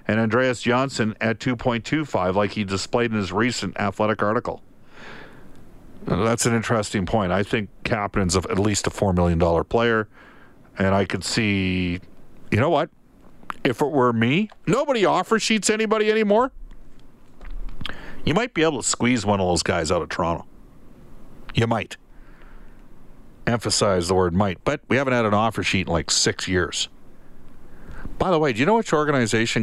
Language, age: English, 50-69